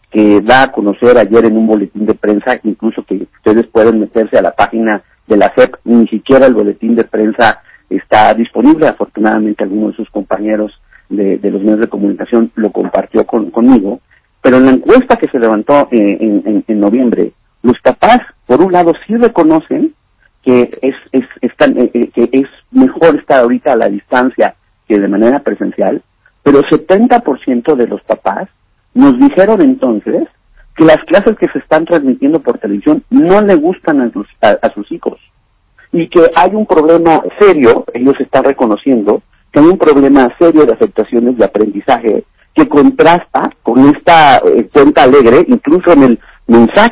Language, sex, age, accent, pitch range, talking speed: Spanish, male, 50-69, Mexican, 115-175 Hz, 175 wpm